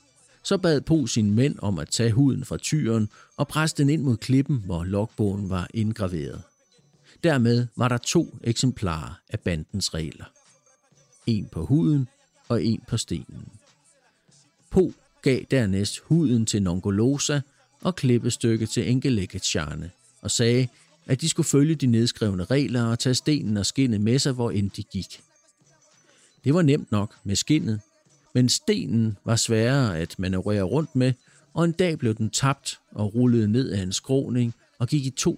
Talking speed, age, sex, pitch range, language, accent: 165 wpm, 50-69, male, 105-135 Hz, Danish, native